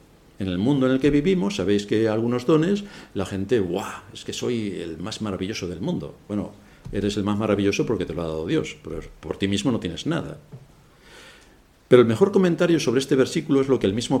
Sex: male